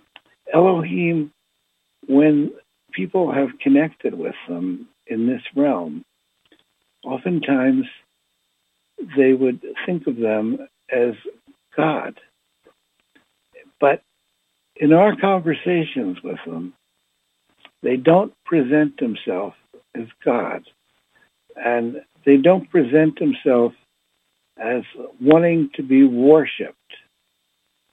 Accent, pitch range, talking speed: American, 125-175 Hz, 85 wpm